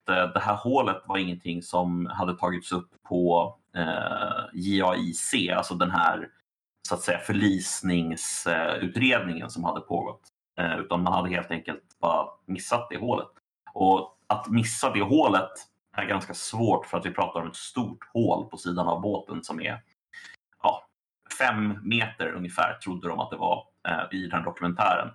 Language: Swedish